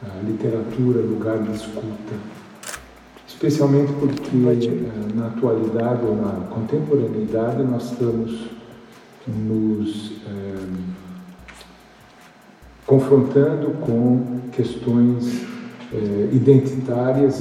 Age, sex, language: 50-69, male, English